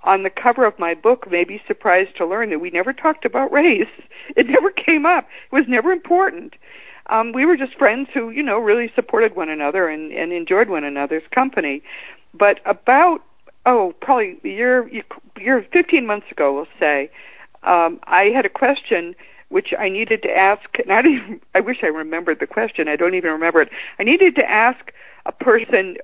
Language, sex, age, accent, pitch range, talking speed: English, female, 60-79, American, 180-295 Hz, 195 wpm